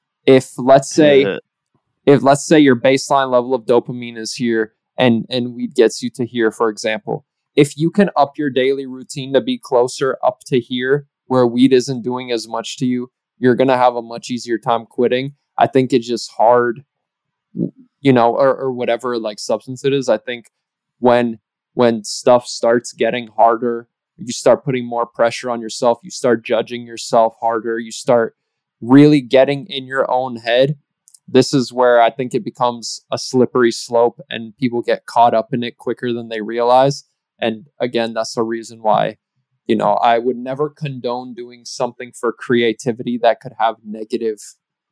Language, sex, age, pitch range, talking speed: English, male, 20-39, 115-130 Hz, 180 wpm